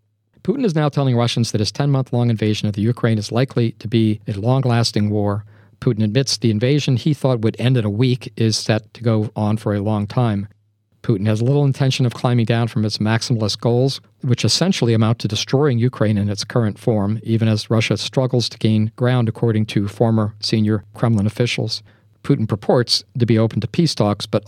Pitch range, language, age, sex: 110-130 Hz, English, 50-69, male